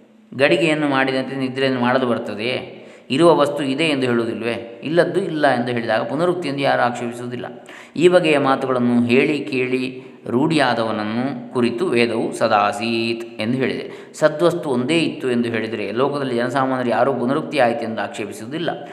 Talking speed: 130 wpm